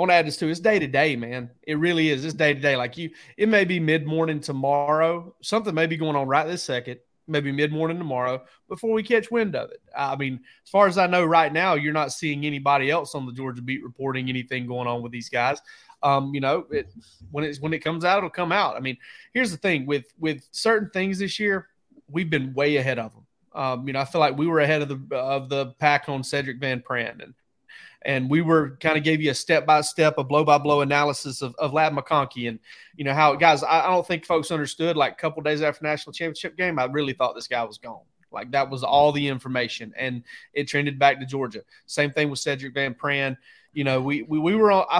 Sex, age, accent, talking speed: male, 30-49, American, 240 wpm